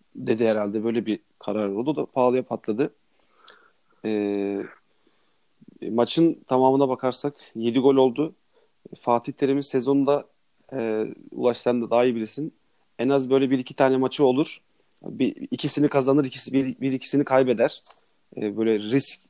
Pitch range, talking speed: 110-135 Hz, 135 wpm